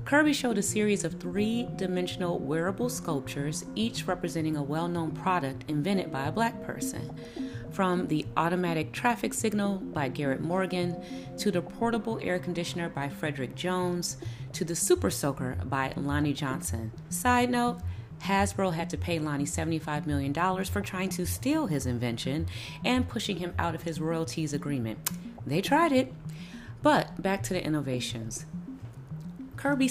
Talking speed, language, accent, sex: 145 wpm, English, American, female